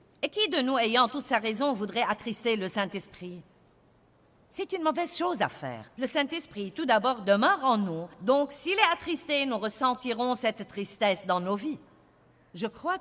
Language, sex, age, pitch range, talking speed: French, female, 50-69, 175-250 Hz, 175 wpm